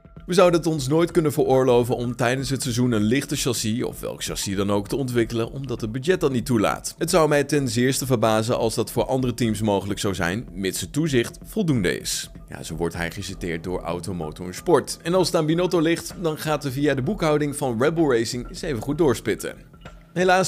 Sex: male